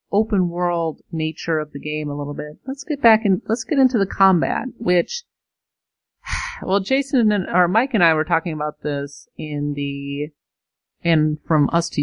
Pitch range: 150-195 Hz